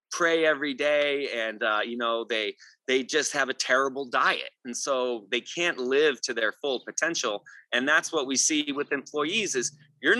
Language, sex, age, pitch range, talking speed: English, male, 30-49, 125-150 Hz, 190 wpm